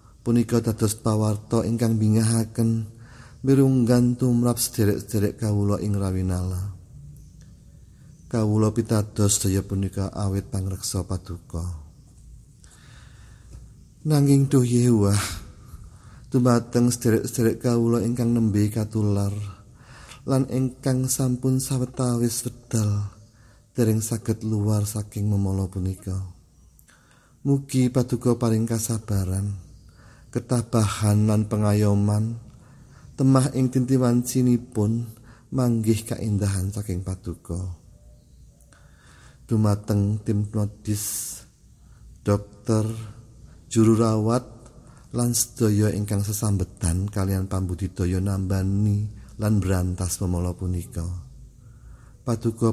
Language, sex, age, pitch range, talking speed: Indonesian, male, 40-59, 100-120 Hz, 85 wpm